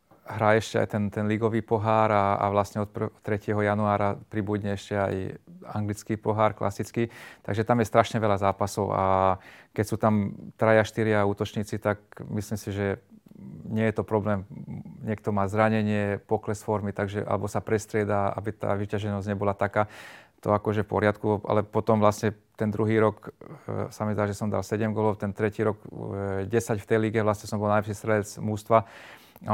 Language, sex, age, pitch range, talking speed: Slovak, male, 30-49, 100-110 Hz, 175 wpm